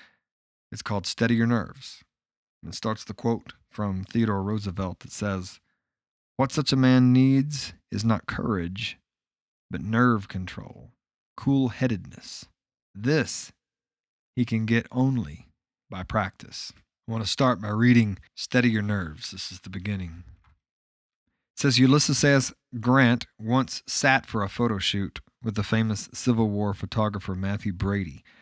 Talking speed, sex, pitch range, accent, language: 140 wpm, male, 95-120 Hz, American, English